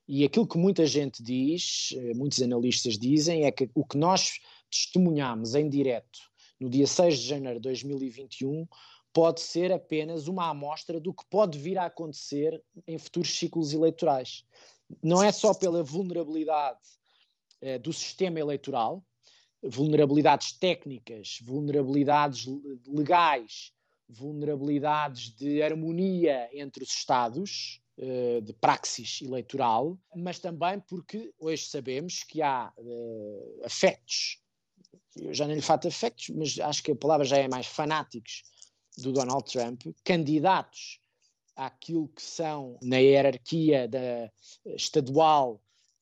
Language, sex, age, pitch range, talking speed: Portuguese, male, 20-39, 130-165 Hz, 120 wpm